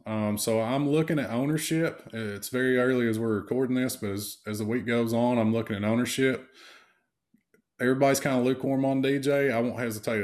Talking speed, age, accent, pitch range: 195 wpm, 20-39, American, 105-120 Hz